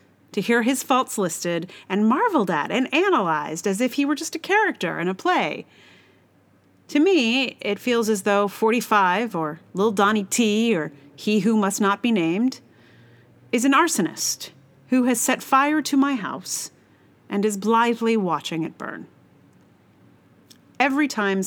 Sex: female